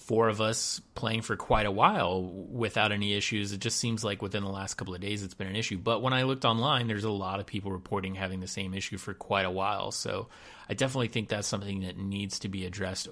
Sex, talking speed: male, 250 wpm